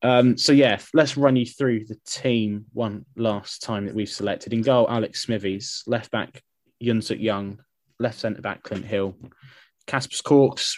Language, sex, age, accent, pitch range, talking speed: English, male, 20-39, British, 110-130 Hz, 150 wpm